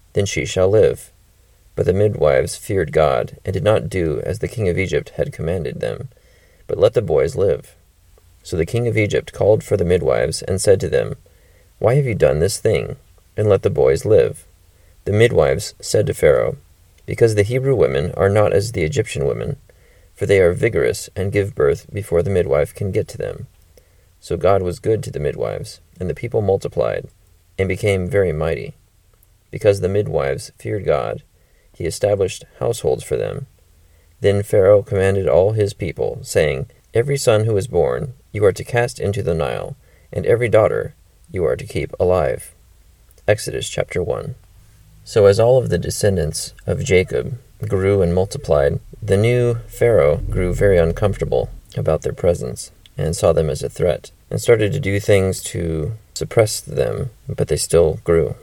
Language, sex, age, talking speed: English, male, 30-49, 175 wpm